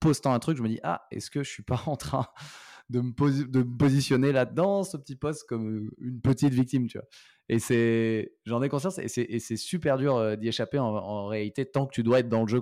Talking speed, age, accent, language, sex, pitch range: 260 wpm, 20-39, French, French, male, 100-120 Hz